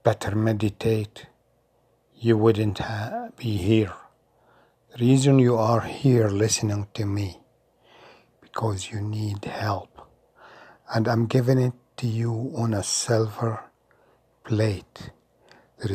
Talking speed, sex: 115 wpm, male